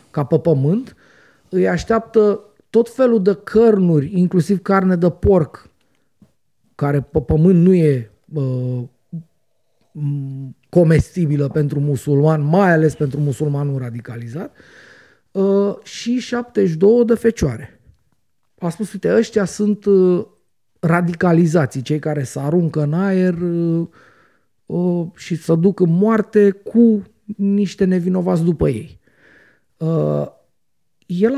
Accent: native